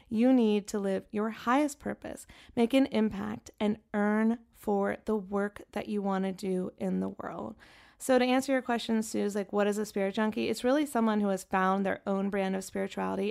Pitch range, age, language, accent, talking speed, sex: 200-235 Hz, 20-39, English, American, 205 wpm, female